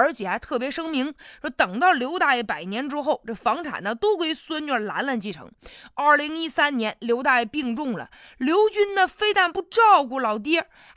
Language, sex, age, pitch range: Chinese, female, 20-39, 240-360 Hz